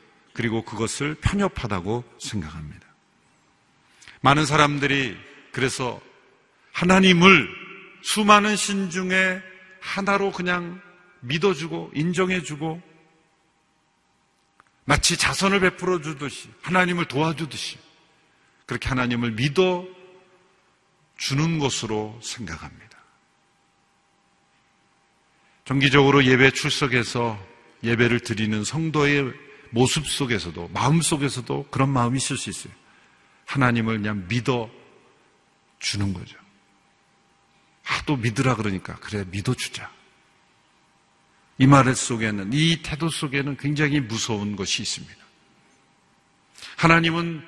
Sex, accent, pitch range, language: male, native, 125-175 Hz, Korean